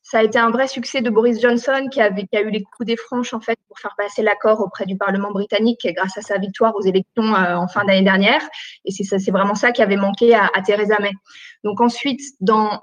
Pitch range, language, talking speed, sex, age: 200-235 Hz, French, 255 wpm, female, 20-39